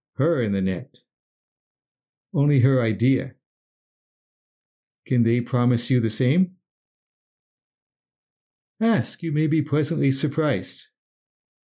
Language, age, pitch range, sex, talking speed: English, 50-69, 115-145 Hz, male, 100 wpm